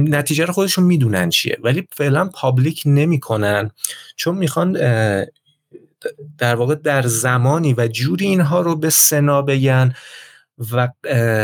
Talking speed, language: 120 wpm, Persian